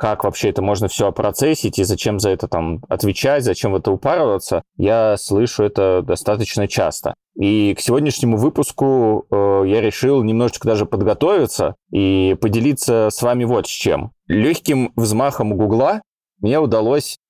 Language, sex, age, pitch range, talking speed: Russian, male, 20-39, 105-145 Hz, 150 wpm